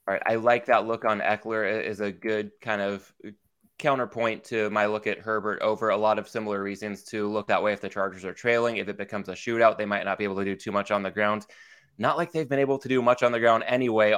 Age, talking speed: 20-39, 265 wpm